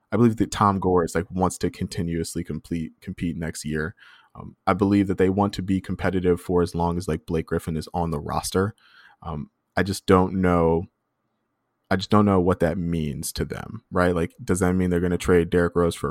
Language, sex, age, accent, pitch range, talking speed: English, male, 20-39, American, 85-100 Hz, 225 wpm